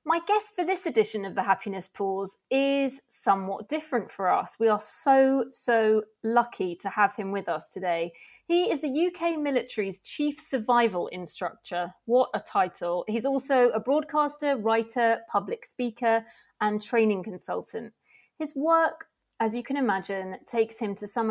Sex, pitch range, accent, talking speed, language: female, 200-260 Hz, British, 160 wpm, English